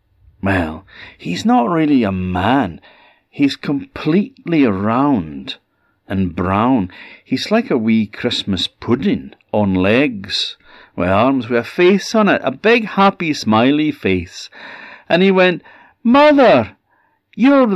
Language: English